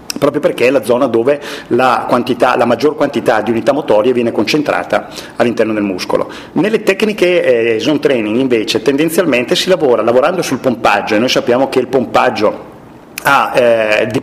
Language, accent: Italian, native